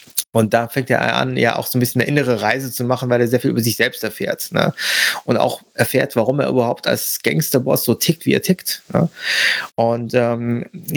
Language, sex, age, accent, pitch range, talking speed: German, male, 30-49, German, 130-170 Hz, 220 wpm